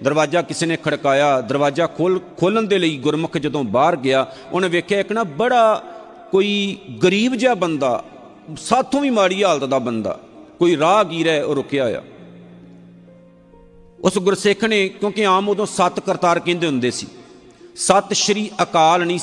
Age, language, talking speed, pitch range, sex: 50-69, Punjabi, 150 wpm, 155-200 Hz, male